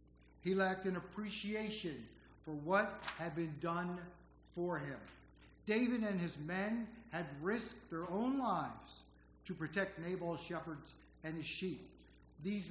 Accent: American